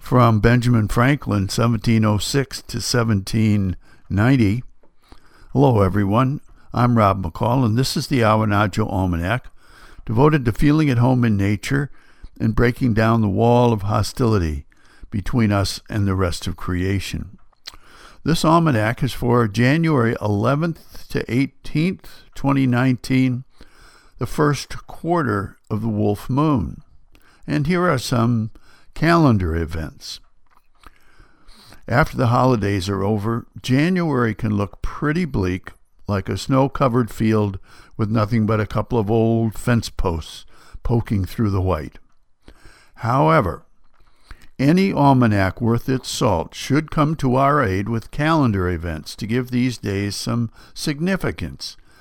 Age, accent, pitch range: 60-79, American, 100-135 Hz